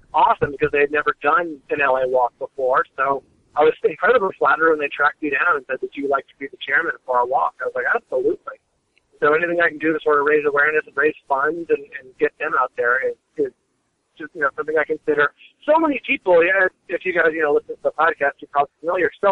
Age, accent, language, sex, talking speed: 40-59, American, English, male, 250 wpm